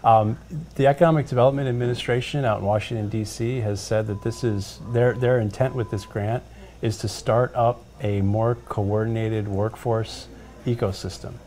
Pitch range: 100-120 Hz